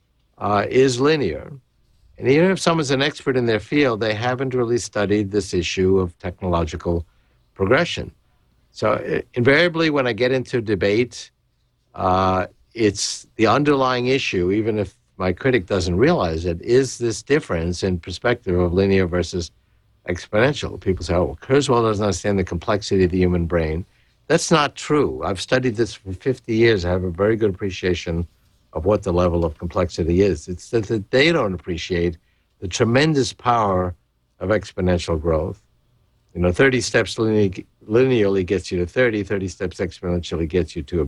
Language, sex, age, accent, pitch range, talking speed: English, male, 60-79, American, 85-115 Hz, 160 wpm